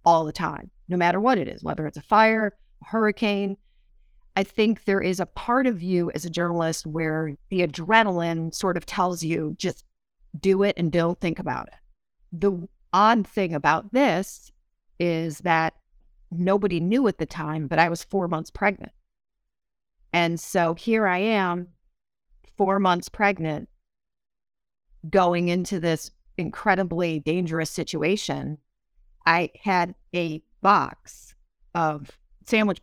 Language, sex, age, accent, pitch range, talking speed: English, female, 40-59, American, 160-190 Hz, 140 wpm